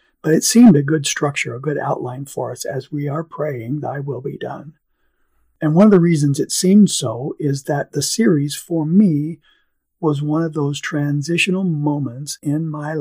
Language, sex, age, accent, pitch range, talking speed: English, male, 50-69, American, 140-160 Hz, 190 wpm